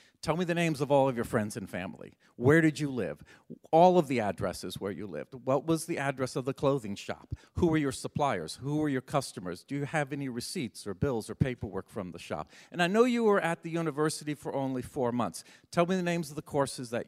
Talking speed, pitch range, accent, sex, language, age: 245 wpm, 120-155 Hz, American, male, English, 50-69